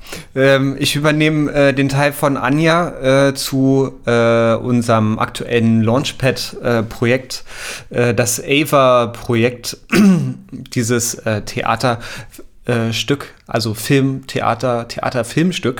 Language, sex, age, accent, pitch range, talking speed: German, male, 30-49, German, 110-130 Hz, 60 wpm